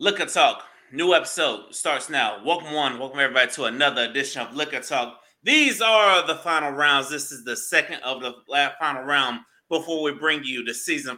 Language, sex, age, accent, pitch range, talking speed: English, male, 30-49, American, 135-170 Hz, 195 wpm